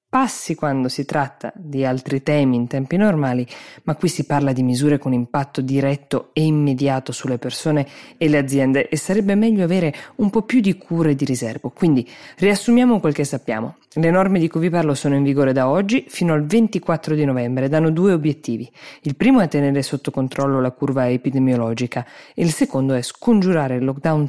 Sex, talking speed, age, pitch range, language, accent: female, 195 wpm, 20-39, 130-175 Hz, Italian, native